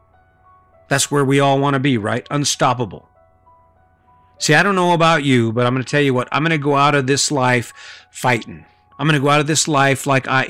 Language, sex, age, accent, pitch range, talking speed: English, male, 50-69, American, 130-165 Hz, 235 wpm